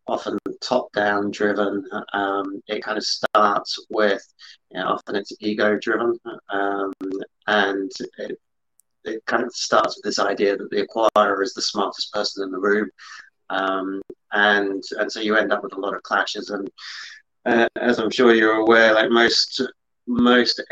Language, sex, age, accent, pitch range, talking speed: English, male, 30-49, British, 95-115 Hz, 160 wpm